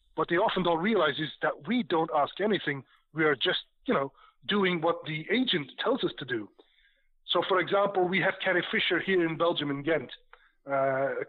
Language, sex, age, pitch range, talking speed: German, male, 40-59, 150-195 Hz, 200 wpm